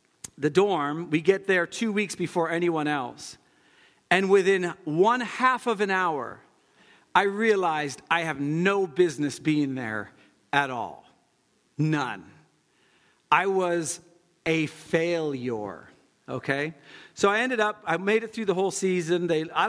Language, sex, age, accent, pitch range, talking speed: English, male, 40-59, American, 145-190 Hz, 140 wpm